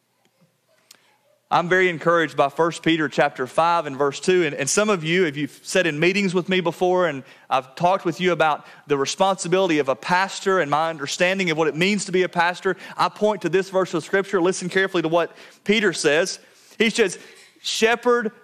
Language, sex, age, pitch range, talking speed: English, male, 30-49, 160-205 Hz, 200 wpm